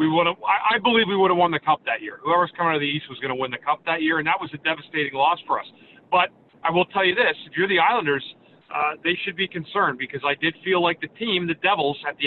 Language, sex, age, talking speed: English, male, 40-59, 300 wpm